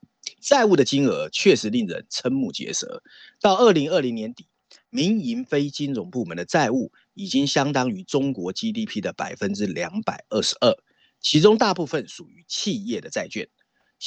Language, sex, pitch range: Chinese, male, 140-230 Hz